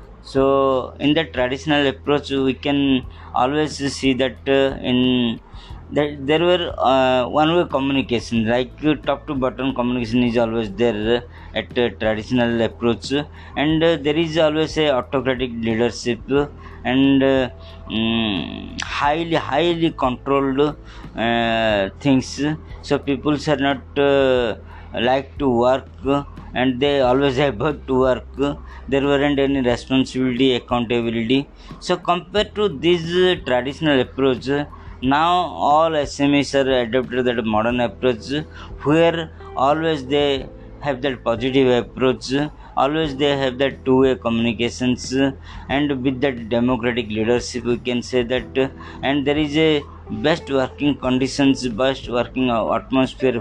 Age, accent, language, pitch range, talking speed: 20-39, native, Hindi, 120-145 Hz, 130 wpm